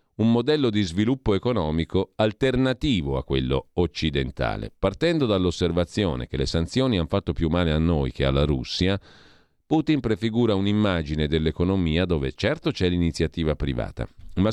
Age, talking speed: 40-59, 135 wpm